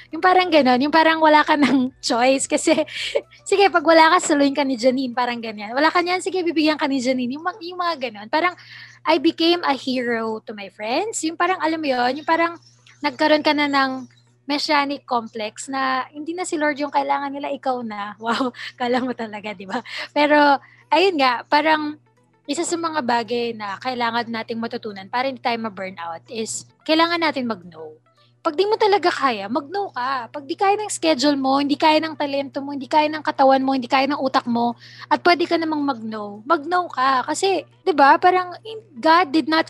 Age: 20-39